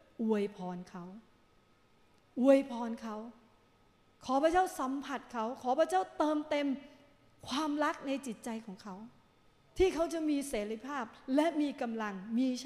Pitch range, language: 220-295 Hz, Thai